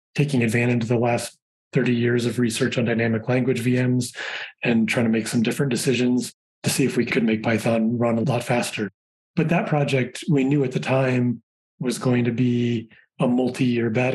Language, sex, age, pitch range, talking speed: English, male, 20-39, 120-135 Hz, 195 wpm